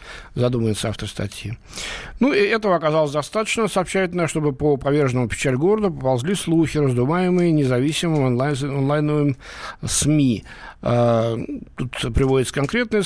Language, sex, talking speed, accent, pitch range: Russian, male, 110 wpm, native, 120-170 Hz